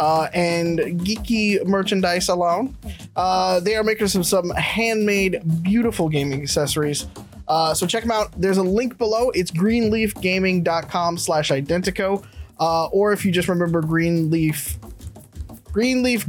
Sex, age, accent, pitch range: male, 20-39, American, 145-190 Hz